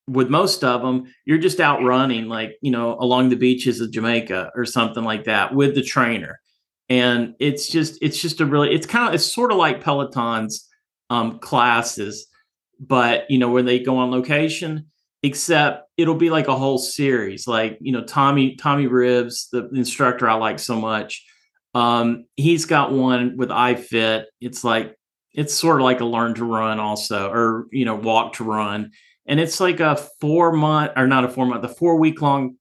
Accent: American